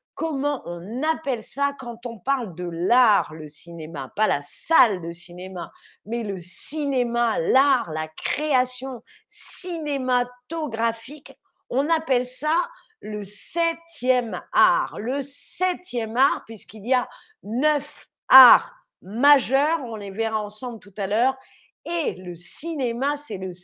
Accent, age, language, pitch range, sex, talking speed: French, 40-59, French, 220-290 Hz, female, 125 wpm